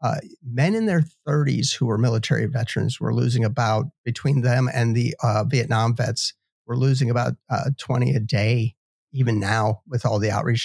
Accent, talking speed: American, 180 wpm